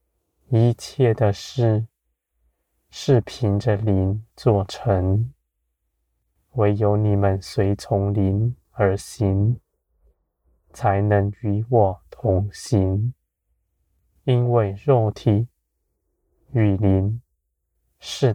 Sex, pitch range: male, 70-115 Hz